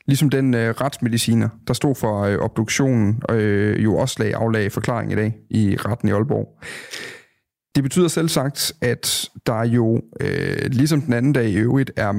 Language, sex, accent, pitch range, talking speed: Danish, male, native, 110-140 Hz, 170 wpm